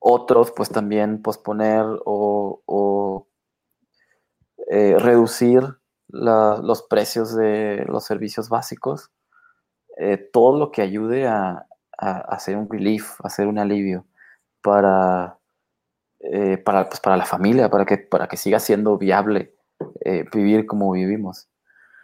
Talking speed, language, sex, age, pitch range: 130 wpm, Spanish, male, 20-39, 95-110 Hz